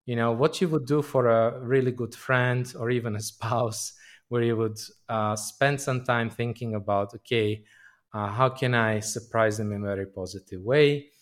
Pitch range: 110-125 Hz